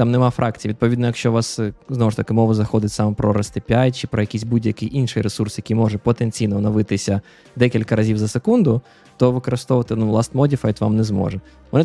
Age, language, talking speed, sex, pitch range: 20-39, Ukrainian, 195 wpm, male, 110-140 Hz